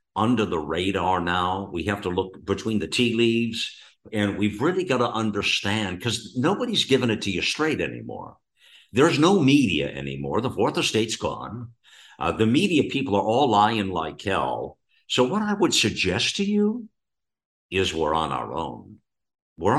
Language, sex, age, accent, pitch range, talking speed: English, male, 50-69, American, 95-115 Hz, 170 wpm